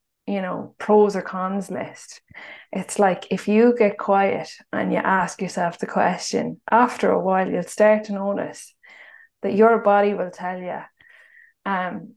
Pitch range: 185-215 Hz